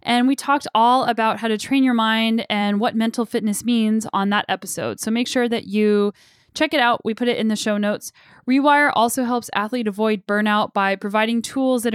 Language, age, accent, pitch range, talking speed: English, 10-29, American, 215-260 Hz, 215 wpm